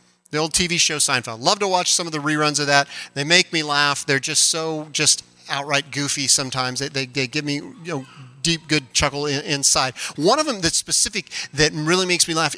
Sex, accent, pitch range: male, American, 150-230 Hz